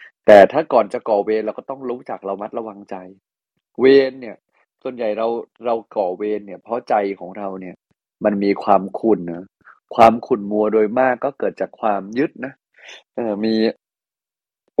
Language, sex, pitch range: Thai, male, 105-130 Hz